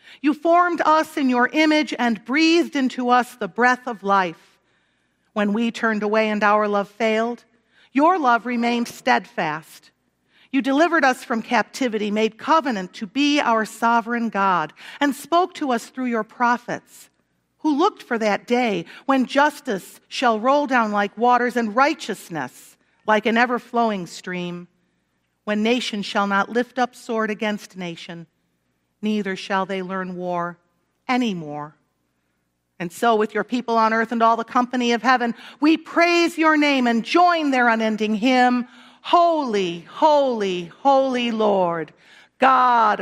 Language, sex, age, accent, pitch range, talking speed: English, female, 50-69, American, 205-265 Hz, 145 wpm